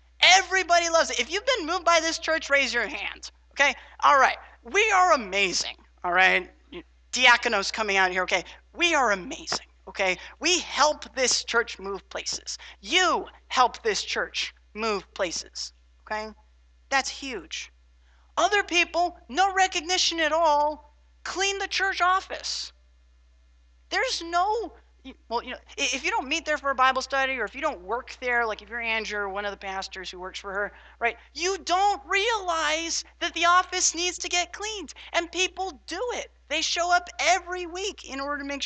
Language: English